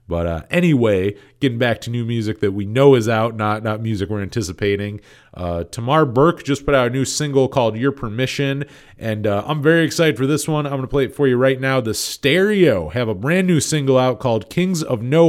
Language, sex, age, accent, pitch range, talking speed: English, male, 30-49, American, 110-140 Hz, 230 wpm